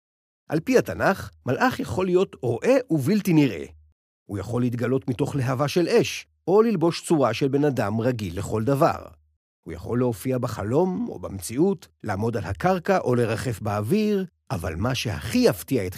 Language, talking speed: Hebrew, 160 wpm